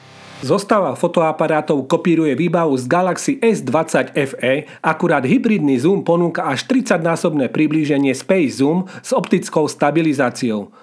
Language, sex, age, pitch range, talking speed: Slovak, male, 40-59, 155-215 Hz, 110 wpm